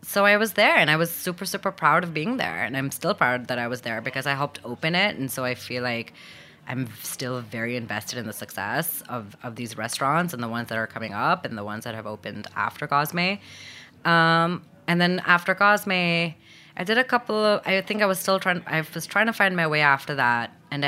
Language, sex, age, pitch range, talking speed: English, female, 20-39, 125-165 Hz, 240 wpm